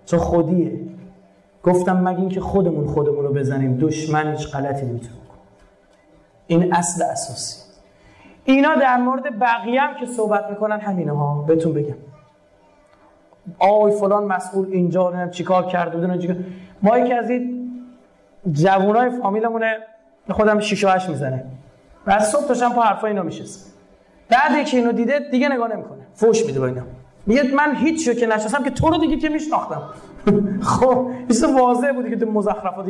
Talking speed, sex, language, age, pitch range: 140 wpm, male, Persian, 30-49, 175-245 Hz